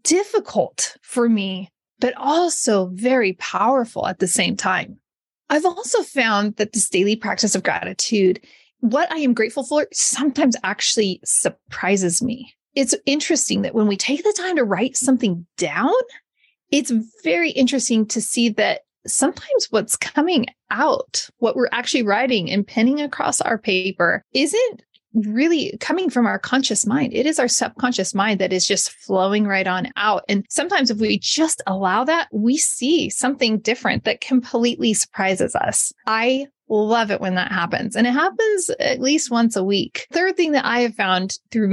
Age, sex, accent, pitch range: 30-49, female, American, 200-275 Hz